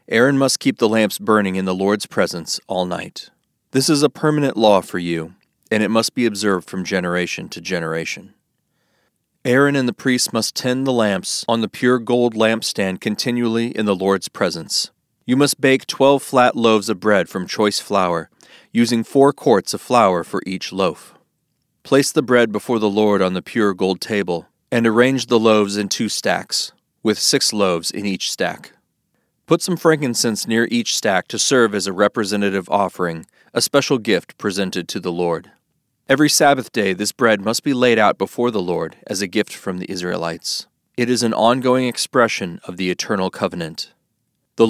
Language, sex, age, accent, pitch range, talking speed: English, male, 40-59, American, 100-125 Hz, 185 wpm